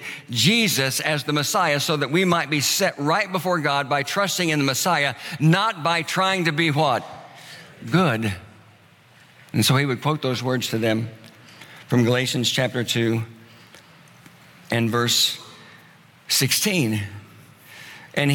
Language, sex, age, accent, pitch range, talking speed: English, male, 60-79, American, 125-160 Hz, 135 wpm